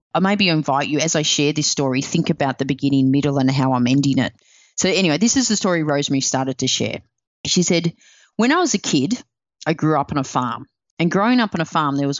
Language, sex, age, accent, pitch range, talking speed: English, female, 30-49, Australian, 130-165 Hz, 245 wpm